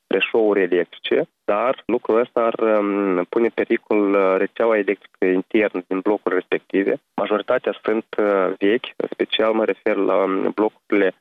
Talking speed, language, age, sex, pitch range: 130 wpm, Romanian, 20-39, male, 100-115 Hz